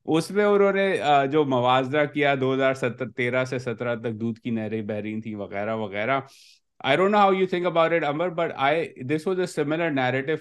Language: Urdu